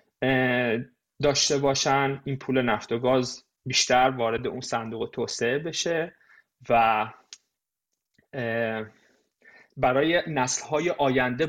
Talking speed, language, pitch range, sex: 90 wpm, Persian, 125-160 Hz, male